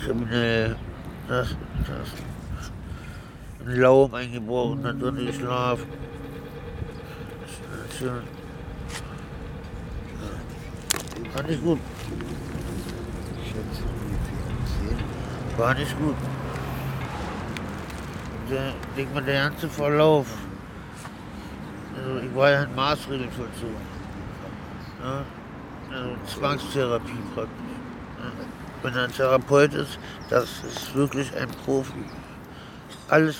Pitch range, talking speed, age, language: 125-140 Hz, 80 wpm, 60-79, German